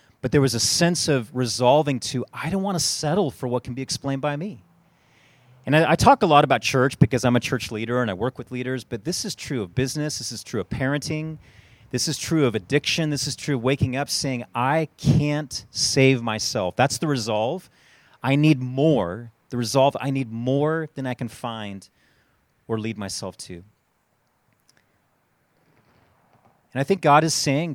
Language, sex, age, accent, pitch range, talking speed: English, male, 30-49, American, 120-145 Hz, 195 wpm